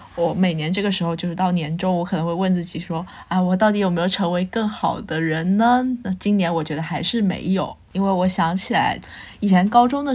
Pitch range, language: 170-200 Hz, Chinese